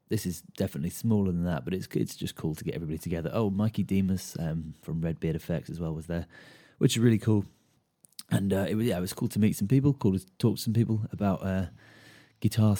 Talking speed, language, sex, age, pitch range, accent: 245 wpm, English, male, 30-49, 85-105 Hz, British